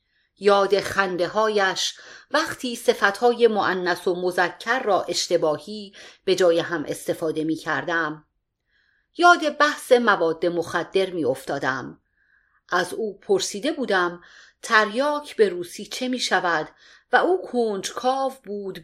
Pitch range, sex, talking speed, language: 175-245 Hz, female, 105 wpm, Persian